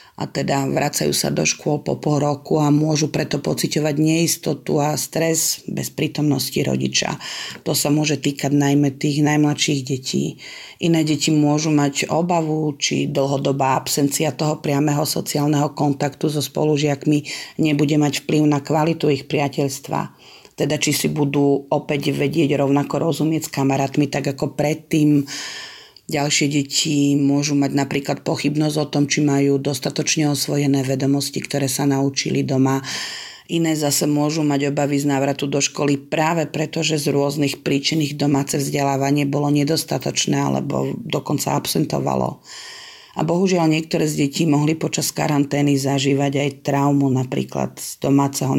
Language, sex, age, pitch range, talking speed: Slovak, female, 40-59, 140-150 Hz, 140 wpm